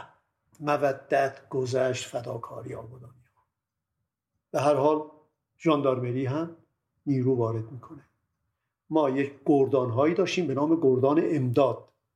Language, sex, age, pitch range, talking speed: Persian, male, 50-69, 120-155 Hz, 105 wpm